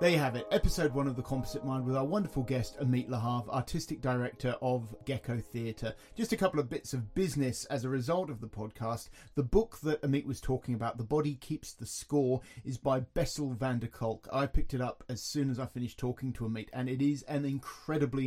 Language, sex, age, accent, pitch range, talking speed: English, male, 30-49, British, 120-140 Hz, 225 wpm